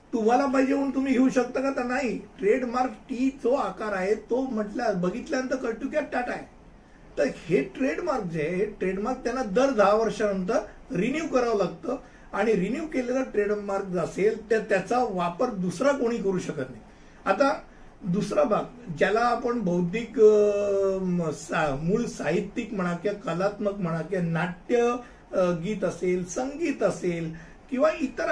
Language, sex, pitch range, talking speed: Hindi, male, 190-250 Hz, 110 wpm